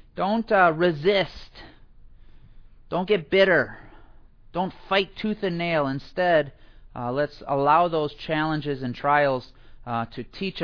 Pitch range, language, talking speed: 140-195 Hz, English, 125 wpm